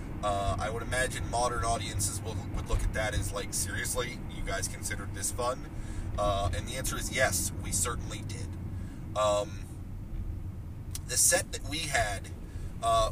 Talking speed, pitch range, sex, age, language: 160 wpm, 100-115 Hz, male, 30-49, English